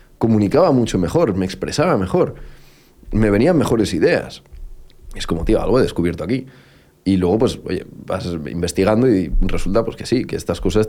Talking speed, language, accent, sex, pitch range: 170 wpm, Spanish, Spanish, male, 85-100 Hz